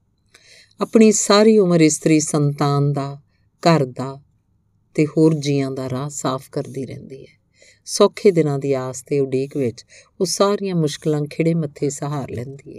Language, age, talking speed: Punjabi, 50-69, 140 wpm